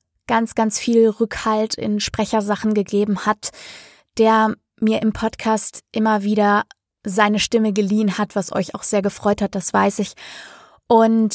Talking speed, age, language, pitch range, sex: 150 wpm, 20-39, German, 205-230 Hz, female